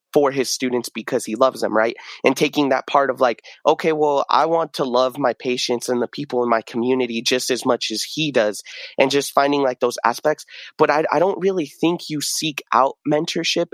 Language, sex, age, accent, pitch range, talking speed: English, male, 20-39, American, 125-150 Hz, 220 wpm